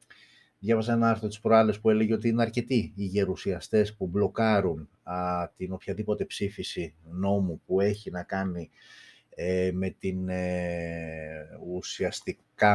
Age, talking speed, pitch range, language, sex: 30-49, 130 wpm, 90-115 Hz, Greek, male